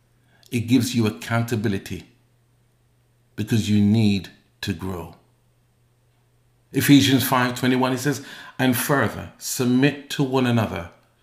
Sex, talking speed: male, 105 wpm